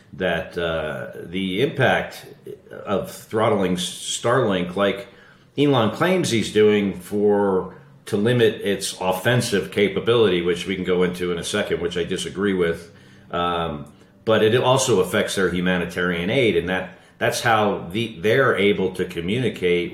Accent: American